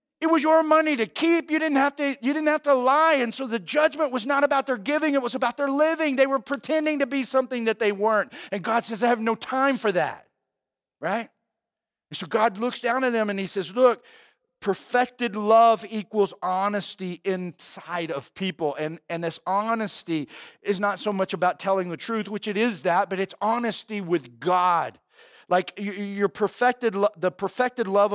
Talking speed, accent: 200 wpm, American